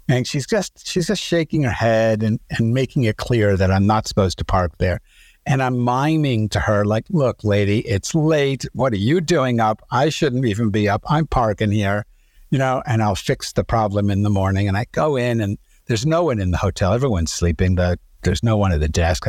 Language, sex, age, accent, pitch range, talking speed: English, male, 60-79, American, 95-130 Hz, 225 wpm